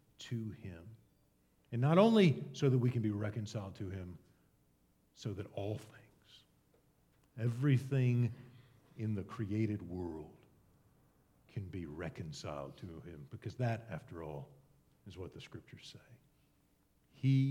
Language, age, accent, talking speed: English, 50-69, American, 125 wpm